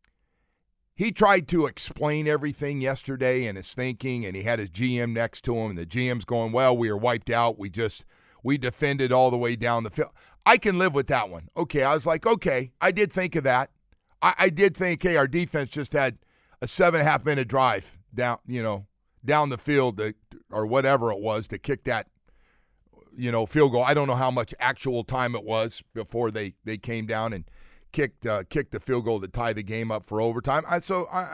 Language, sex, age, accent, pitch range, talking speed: English, male, 50-69, American, 110-140 Hz, 220 wpm